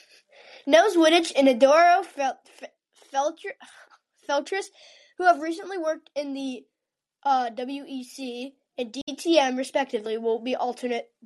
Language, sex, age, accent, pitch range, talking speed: English, female, 10-29, American, 255-320 Hz, 105 wpm